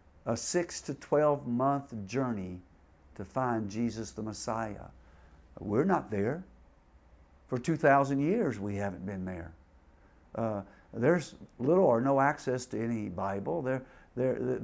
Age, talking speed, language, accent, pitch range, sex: 60-79, 130 wpm, English, American, 110-155 Hz, male